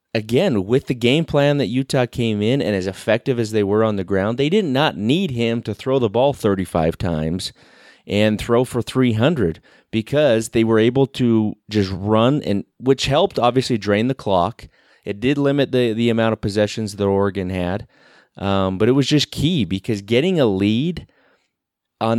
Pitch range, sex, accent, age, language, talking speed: 100-120 Hz, male, American, 30-49, English, 185 wpm